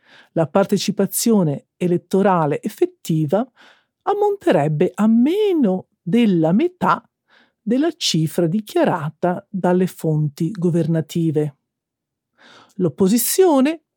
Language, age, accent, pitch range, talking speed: Italian, 50-69, native, 160-235 Hz, 70 wpm